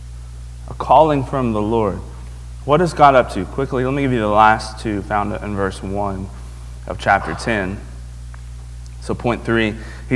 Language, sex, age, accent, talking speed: English, male, 30-49, American, 165 wpm